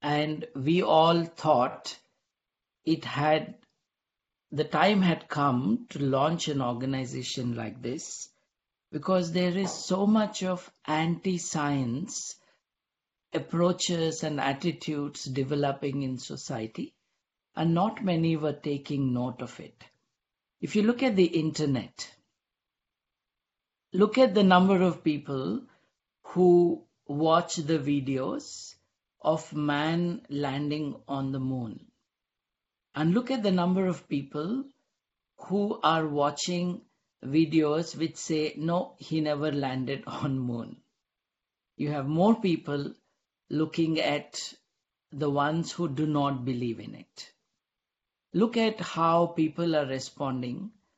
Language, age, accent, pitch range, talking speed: English, 50-69, Indian, 140-175 Hz, 120 wpm